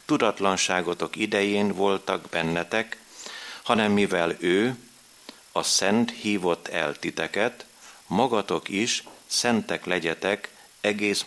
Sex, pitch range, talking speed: male, 90-110 Hz, 85 wpm